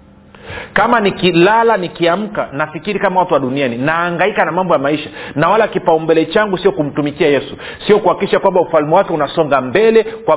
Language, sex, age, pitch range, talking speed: Swahili, male, 40-59, 160-205 Hz, 160 wpm